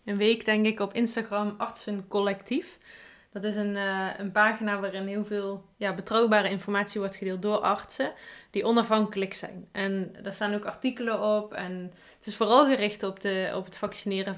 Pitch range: 195-220 Hz